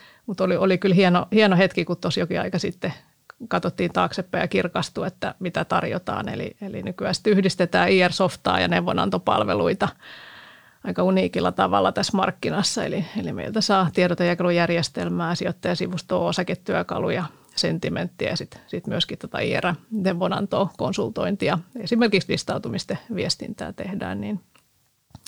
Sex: female